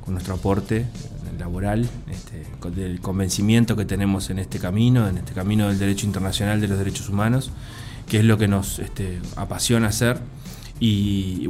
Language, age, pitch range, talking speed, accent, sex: Spanish, 20-39, 100-120 Hz, 155 wpm, Argentinian, male